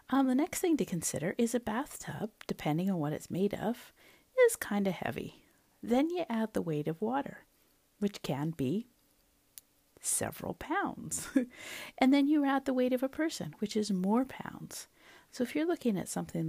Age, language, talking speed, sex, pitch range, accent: 50-69, English, 180 wpm, female, 170-255 Hz, American